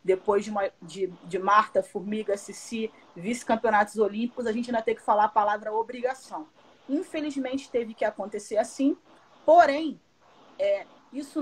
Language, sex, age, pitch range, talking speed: Portuguese, female, 30-49, 220-275 Hz, 125 wpm